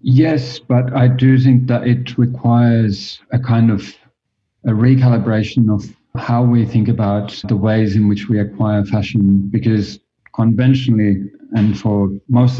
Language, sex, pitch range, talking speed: English, male, 100-120 Hz, 145 wpm